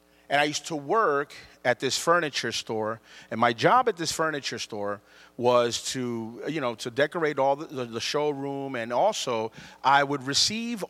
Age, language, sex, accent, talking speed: 40-59, English, male, American, 170 wpm